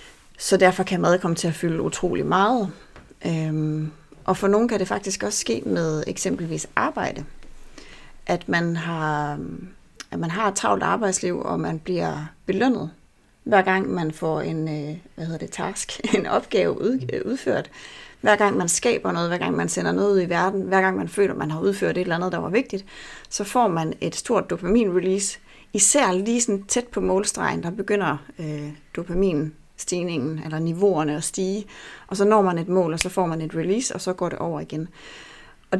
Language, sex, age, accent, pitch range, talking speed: Danish, female, 30-49, native, 160-200 Hz, 185 wpm